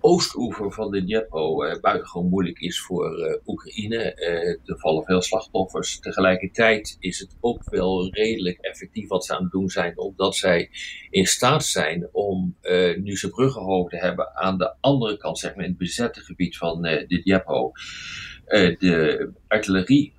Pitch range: 90-110 Hz